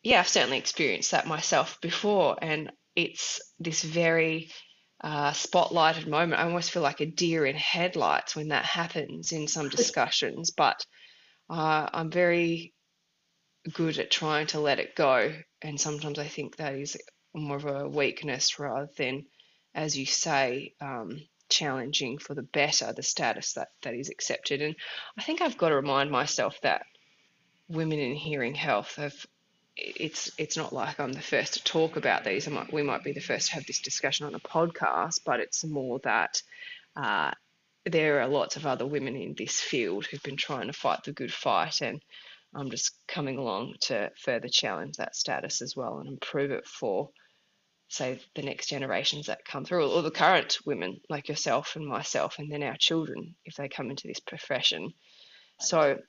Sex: female